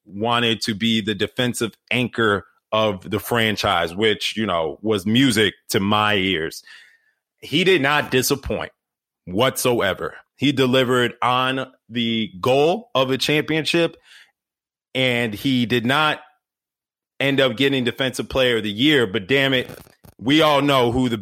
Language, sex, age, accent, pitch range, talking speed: English, male, 30-49, American, 115-140 Hz, 140 wpm